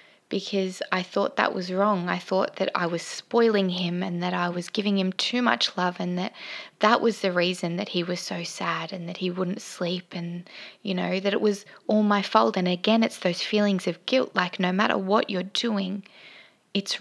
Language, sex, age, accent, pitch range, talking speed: English, female, 20-39, Australian, 180-215 Hz, 215 wpm